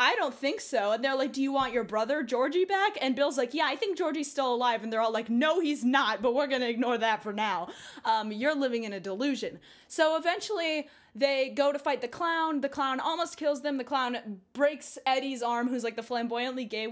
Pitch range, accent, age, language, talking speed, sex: 230-295 Hz, American, 10-29, English, 240 wpm, female